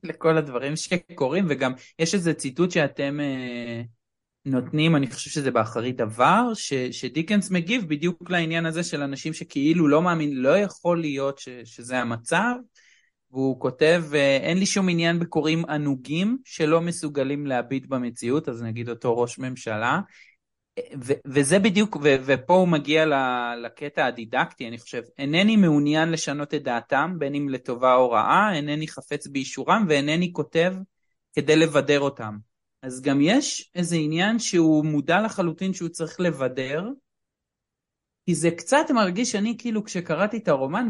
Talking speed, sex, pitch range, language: 145 wpm, male, 135-180 Hz, Hebrew